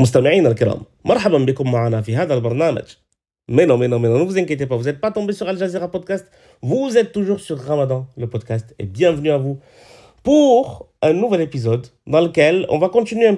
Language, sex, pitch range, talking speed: French, male, 130-185 Hz, 175 wpm